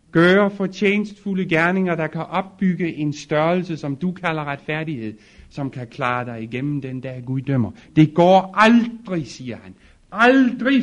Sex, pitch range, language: male, 110-165 Hz, Danish